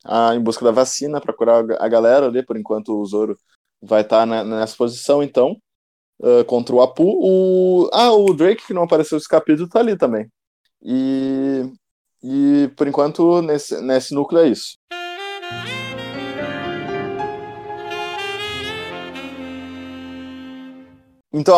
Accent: Brazilian